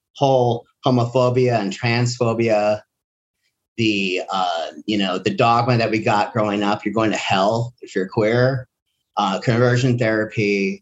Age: 40-59